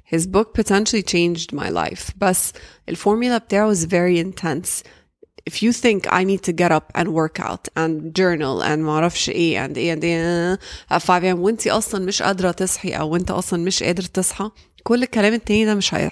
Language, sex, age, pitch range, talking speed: English, female, 20-39, 165-205 Hz, 190 wpm